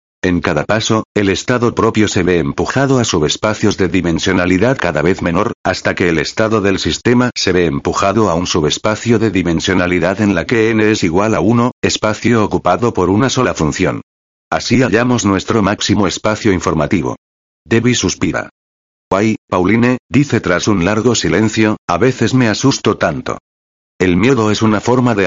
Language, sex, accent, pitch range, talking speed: Spanish, male, Spanish, 75-110 Hz, 165 wpm